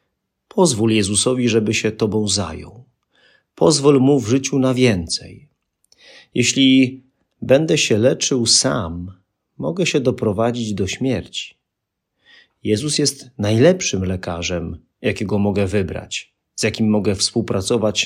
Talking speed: 110 wpm